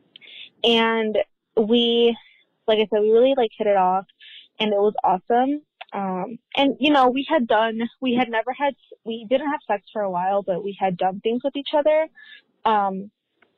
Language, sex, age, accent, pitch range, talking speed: English, female, 20-39, American, 195-235 Hz, 185 wpm